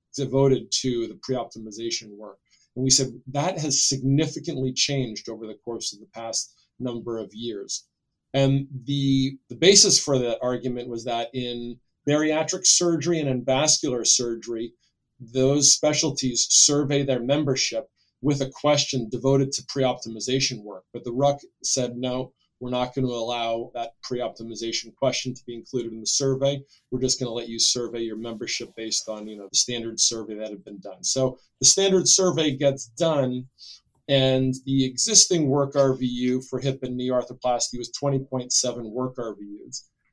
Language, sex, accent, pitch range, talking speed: English, male, American, 120-140 Hz, 160 wpm